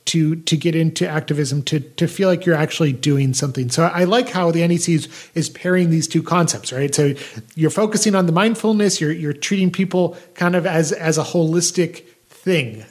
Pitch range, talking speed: 160-195 Hz, 200 wpm